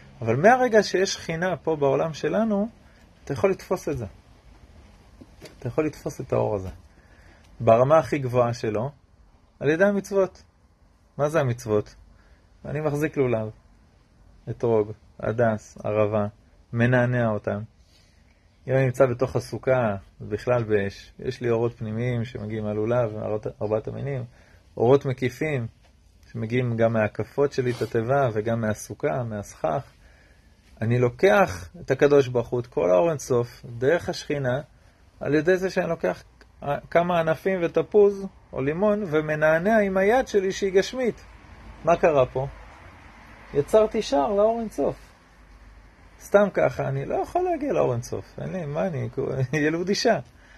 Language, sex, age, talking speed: Hebrew, male, 30-49, 130 wpm